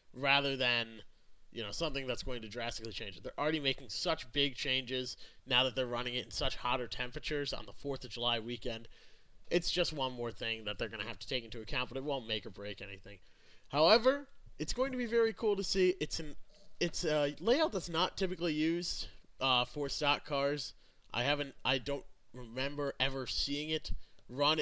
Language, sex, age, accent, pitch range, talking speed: English, male, 30-49, American, 125-150 Hz, 205 wpm